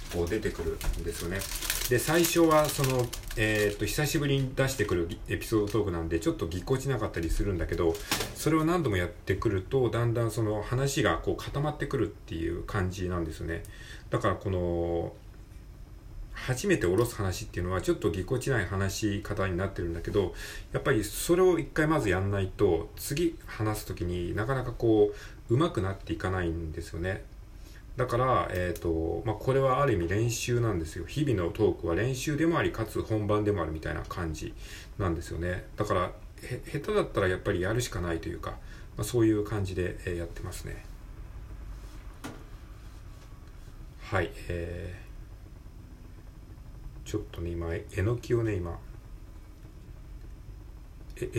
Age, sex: 40-59, male